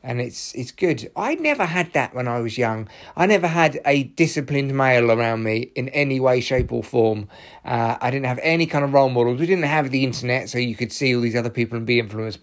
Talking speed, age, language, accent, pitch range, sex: 245 wpm, 30-49, English, British, 115-145 Hz, male